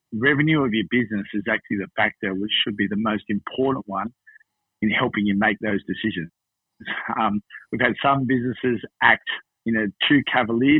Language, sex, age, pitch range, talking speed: English, male, 50-69, 105-130 Hz, 170 wpm